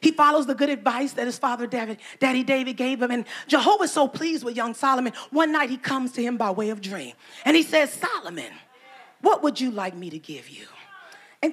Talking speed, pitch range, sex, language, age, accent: 230 wpm, 205-260 Hz, female, English, 40-59, American